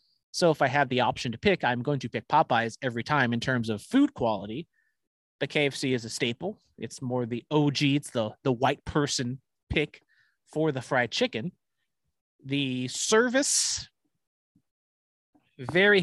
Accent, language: American, English